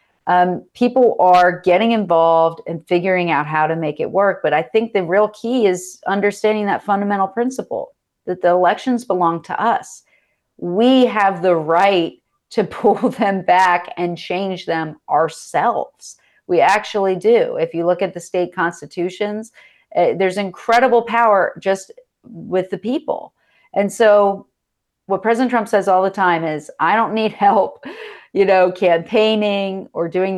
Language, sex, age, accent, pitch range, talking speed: English, female, 40-59, American, 175-210 Hz, 155 wpm